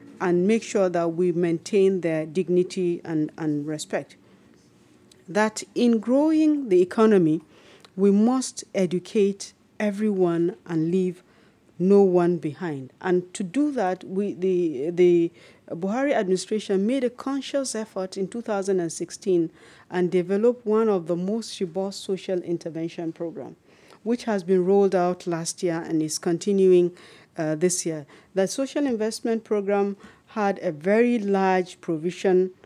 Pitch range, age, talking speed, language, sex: 170-215 Hz, 40-59, 130 wpm, English, female